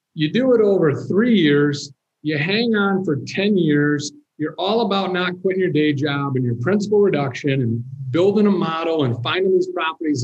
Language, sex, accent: English, male, American